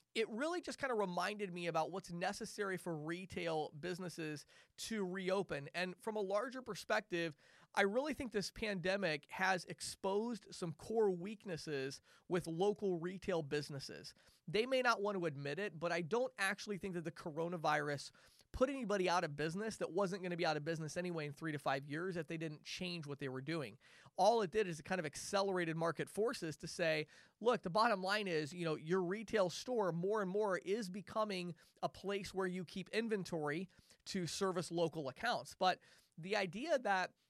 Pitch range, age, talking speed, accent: 165-205 Hz, 30-49, 190 wpm, American